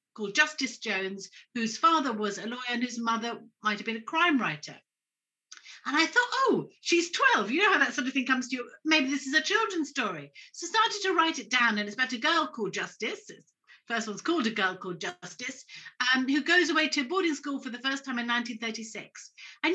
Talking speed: 220 wpm